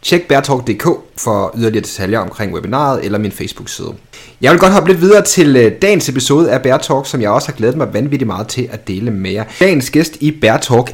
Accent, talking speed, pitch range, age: native, 210 wpm, 110-150 Hz, 30-49